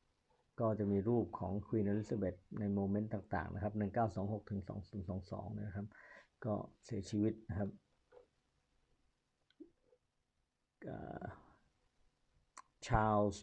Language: Thai